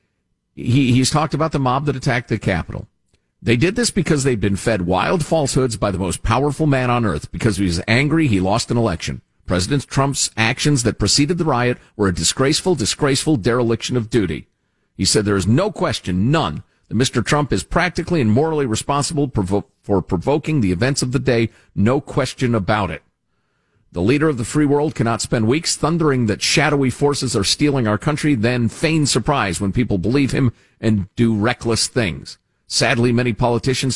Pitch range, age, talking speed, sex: 100-140 Hz, 50-69, 185 wpm, male